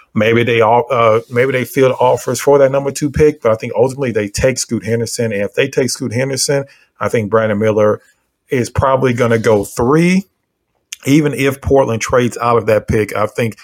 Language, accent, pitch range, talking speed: English, American, 105-135 Hz, 205 wpm